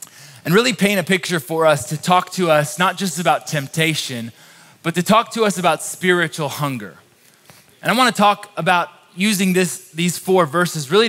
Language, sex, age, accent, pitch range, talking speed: English, male, 20-39, American, 150-185 Hz, 185 wpm